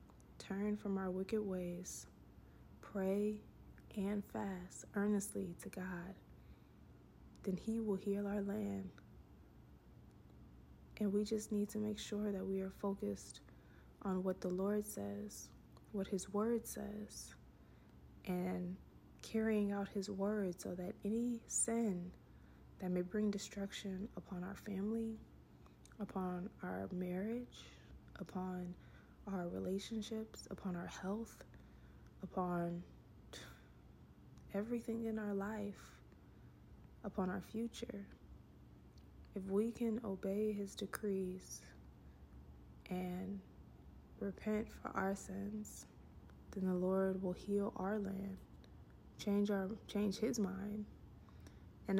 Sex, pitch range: female, 180-210 Hz